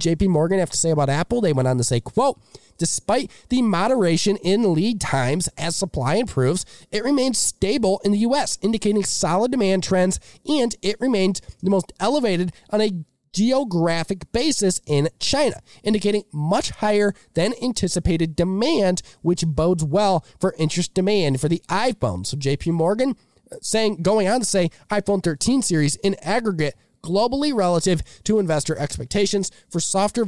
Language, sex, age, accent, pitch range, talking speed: English, male, 20-39, American, 165-205 Hz, 155 wpm